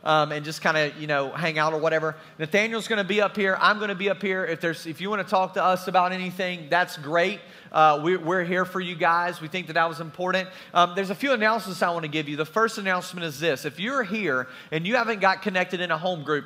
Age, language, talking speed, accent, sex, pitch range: 40-59, English, 275 wpm, American, male, 165-205 Hz